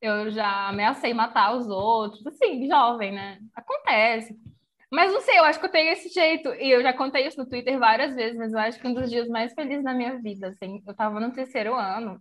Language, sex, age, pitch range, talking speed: Portuguese, female, 10-29, 220-295 Hz, 235 wpm